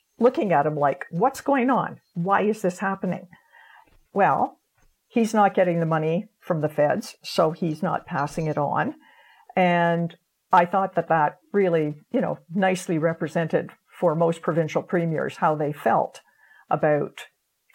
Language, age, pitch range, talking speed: English, 60-79, 165-205 Hz, 150 wpm